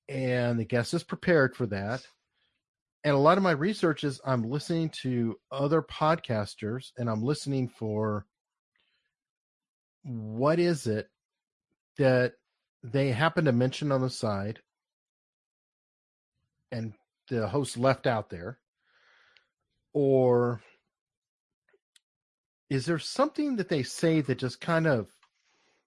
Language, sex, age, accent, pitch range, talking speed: English, male, 40-59, American, 115-150 Hz, 120 wpm